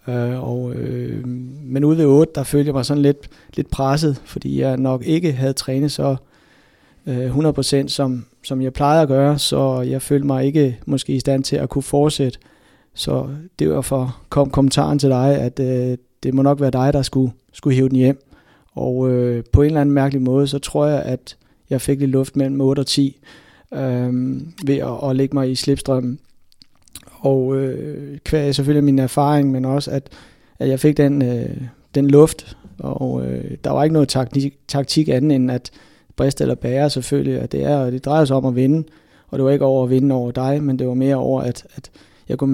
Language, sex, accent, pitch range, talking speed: Danish, male, native, 130-140 Hz, 205 wpm